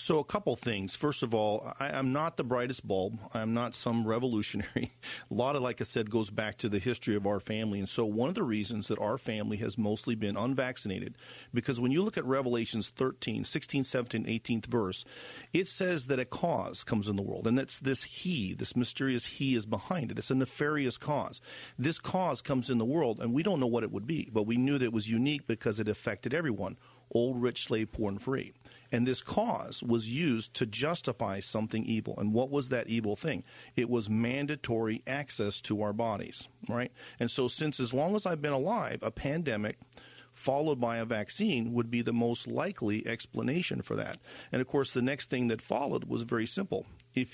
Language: English